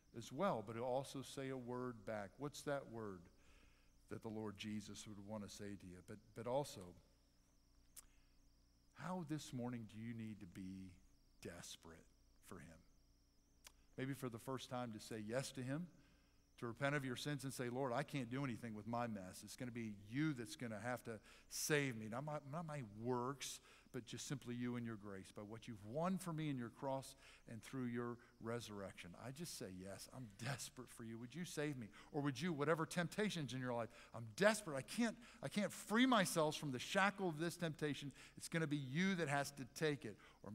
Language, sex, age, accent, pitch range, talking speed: English, male, 50-69, American, 105-145 Hz, 210 wpm